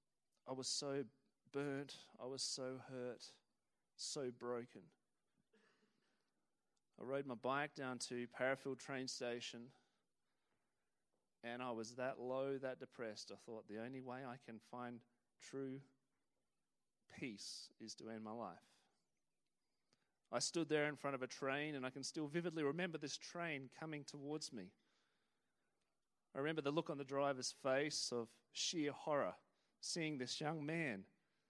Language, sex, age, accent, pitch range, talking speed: English, male, 30-49, Australian, 130-195 Hz, 145 wpm